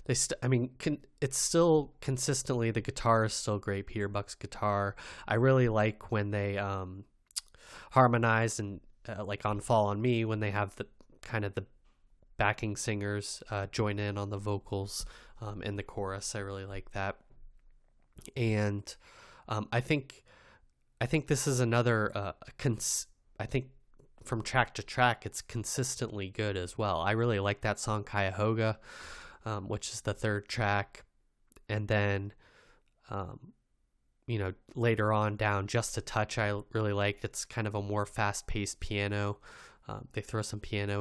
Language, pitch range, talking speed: English, 100-125 Hz, 165 wpm